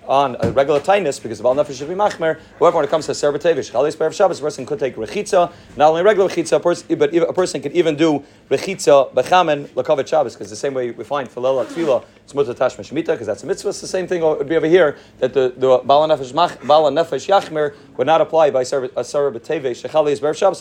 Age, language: 40-59, English